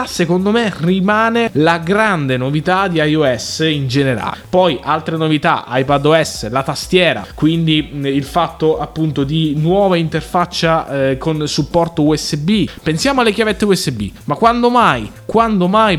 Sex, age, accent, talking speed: male, 20-39, native, 130 wpm